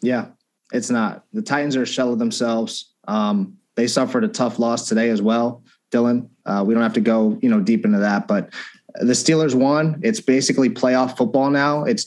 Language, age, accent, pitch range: English, 30-49, American, 120-165 Hz